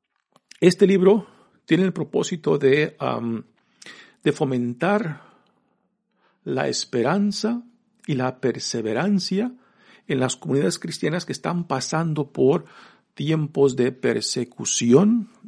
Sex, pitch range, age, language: male, 130-195 Hz, 50-69, Spanish